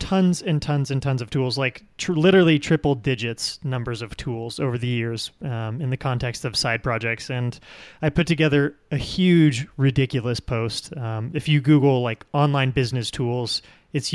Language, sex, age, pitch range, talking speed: English, male, 30-49, 115-145 Hz, 180 wpm